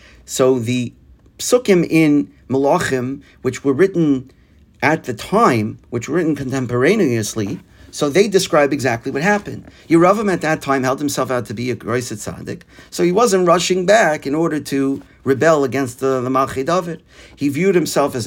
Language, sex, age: English, male, 50-69